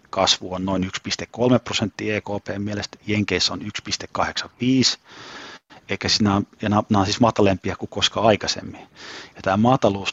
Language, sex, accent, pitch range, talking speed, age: Finnish, male, native, 95-105 Hz, 105 wpm, 30-49